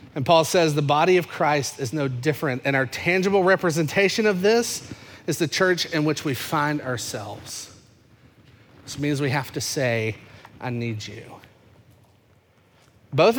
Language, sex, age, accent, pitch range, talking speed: English, male, 30-49, American, 115-170 Hz, 150 wpm